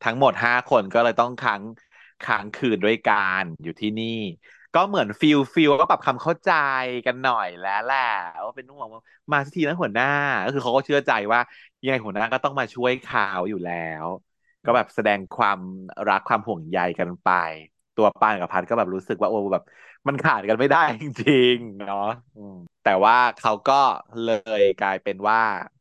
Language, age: Thai, 20-39